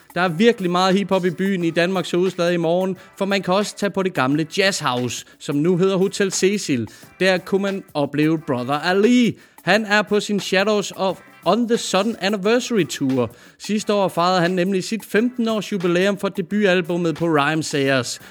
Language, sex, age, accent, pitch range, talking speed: Danish, male, 30-49, native, 155-195 Hz, 185 wpm